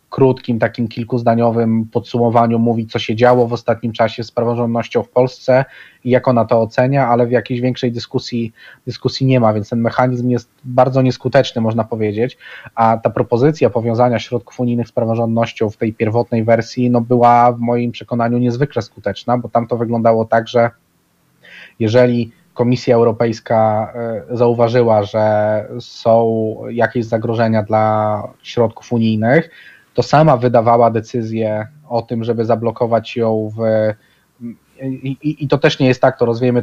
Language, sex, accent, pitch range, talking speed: Polish, male, native, 115-125 Hz, 150 wpm